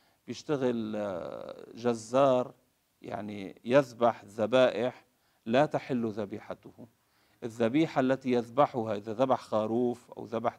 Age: 50-69